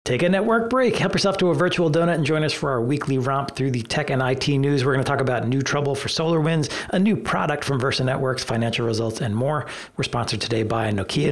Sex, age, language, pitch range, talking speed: male, 40-59, English, 125-150 Hz, 250 wpm